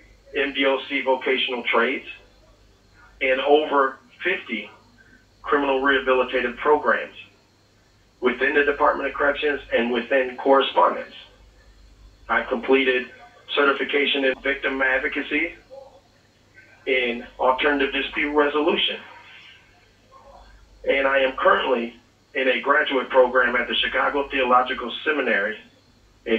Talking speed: 95 wpm